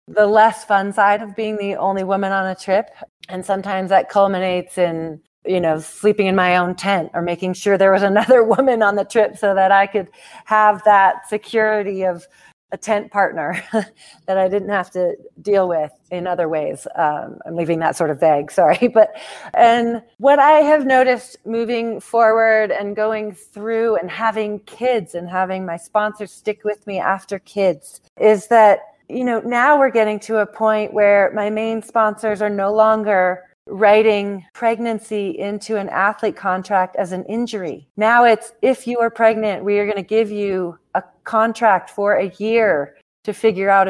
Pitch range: 190-220 Hz